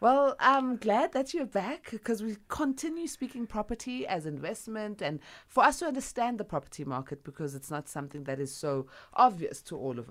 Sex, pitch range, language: female, 135-200 Hz, English